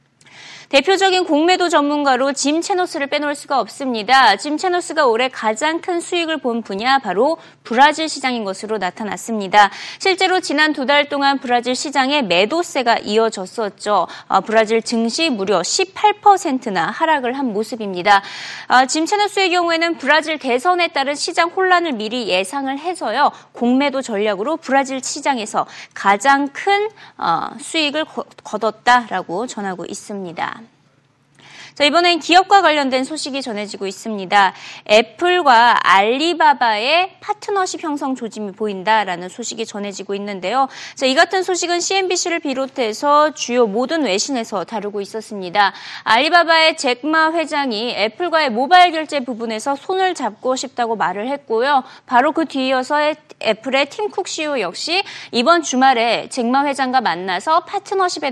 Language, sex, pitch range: Korean, female, 220-325 Hz